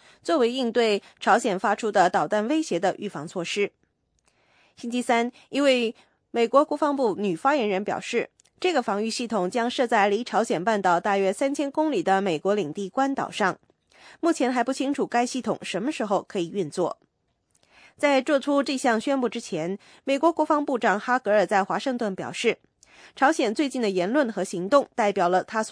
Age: 20-39